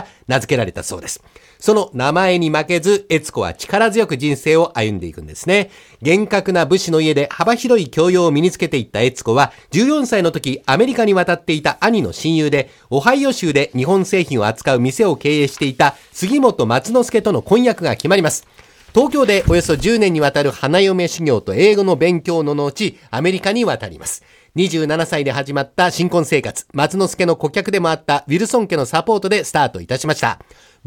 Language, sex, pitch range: Japanese, male, 145-200 Hz